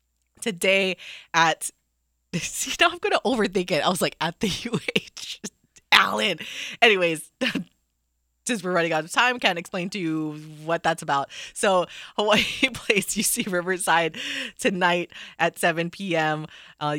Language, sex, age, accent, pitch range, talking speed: English, female, 20-39, American, 150-190 Hz, 140 wpm